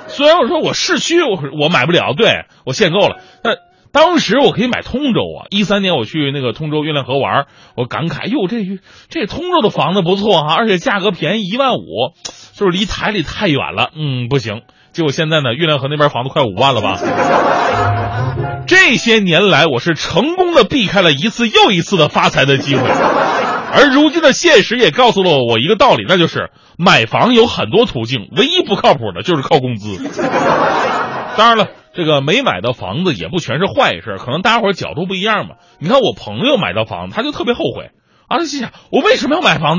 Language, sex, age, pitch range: Chinese, male, 30-49, 150-255 Hz